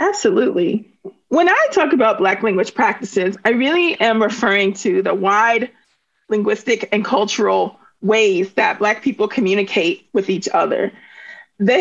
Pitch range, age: 200-275 Hz, 40-59